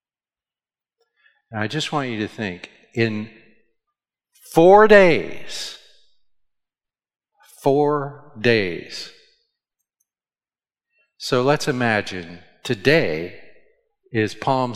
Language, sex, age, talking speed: English, male, 50-69, 75 wpm